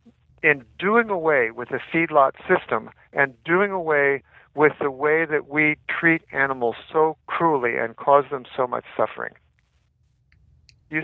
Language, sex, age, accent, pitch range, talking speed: English, male, 60-79, American, 135-165 Hz, 140 wpm